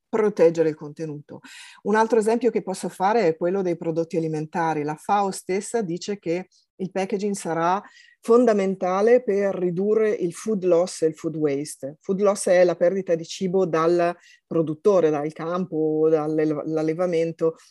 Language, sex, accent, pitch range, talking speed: Italian, female, native, 160-210 Hz, 150 wpm